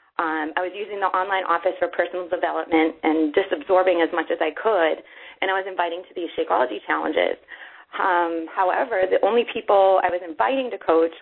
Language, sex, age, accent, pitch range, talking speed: English, female, 30-49, American, 170-195 Hz, 195 wpm